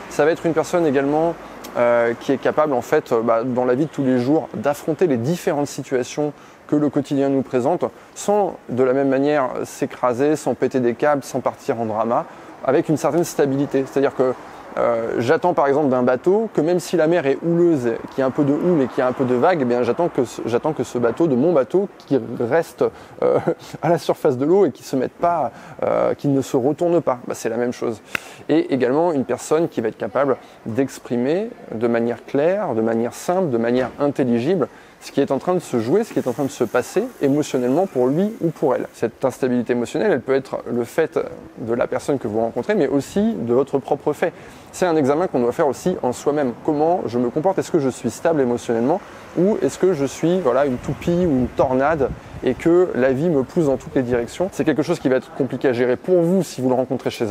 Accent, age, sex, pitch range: French, 20-39, male, 125-165 Hz